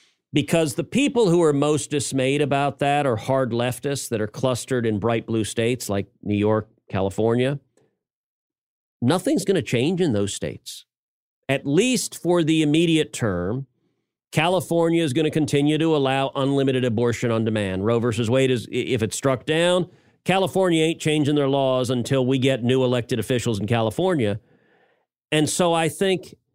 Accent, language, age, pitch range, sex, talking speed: American, English, 40-59, 115-150 Hz, male, 165 wpm